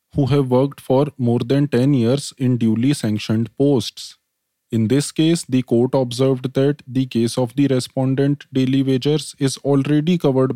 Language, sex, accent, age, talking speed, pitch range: English, male, Indian, 20-39, 165 wpm, 120-145 Hz